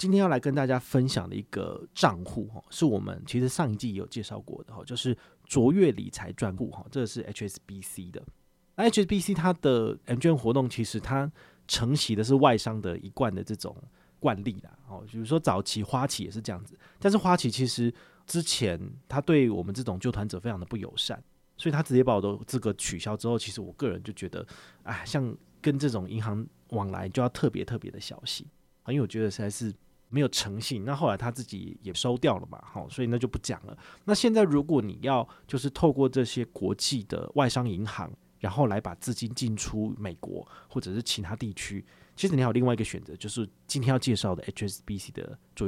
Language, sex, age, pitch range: Chinese, male, 30-49, 105-135 Hz